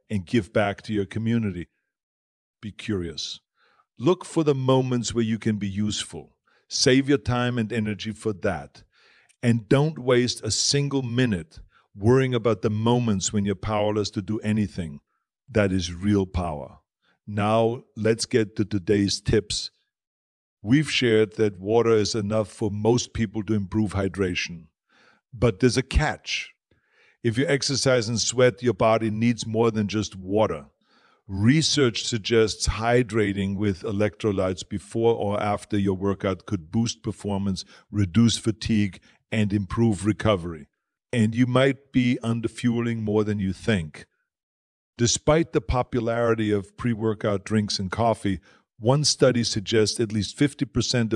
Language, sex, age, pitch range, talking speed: English, male, 50-69, 100-120 Hz, 140 wpm